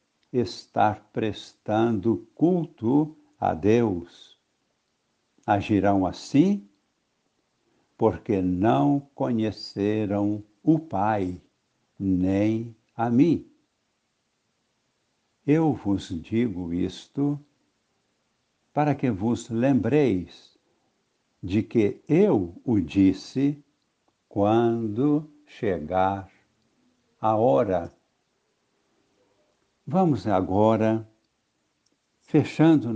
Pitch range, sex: 100-135 Hz, male